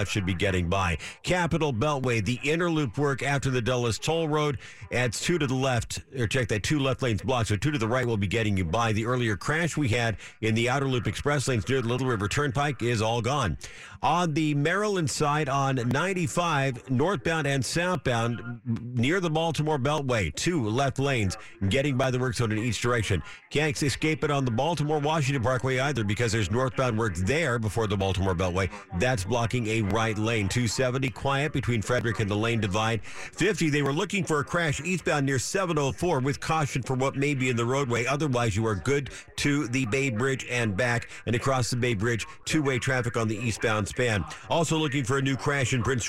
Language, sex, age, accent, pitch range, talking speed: English, male, 50-69, American, 115-145 Hz, 205 wpm